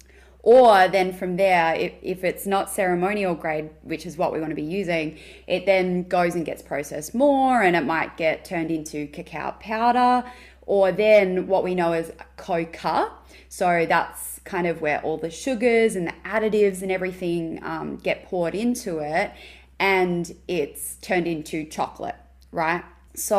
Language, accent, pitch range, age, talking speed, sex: English, Australian, 160-200 Hz, 20-39, 165 wpm, female